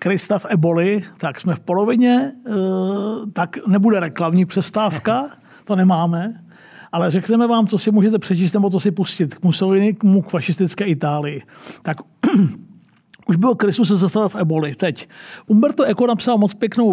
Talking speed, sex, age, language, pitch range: 150 wpm, male, 50-69, Czech, 175-210 Hz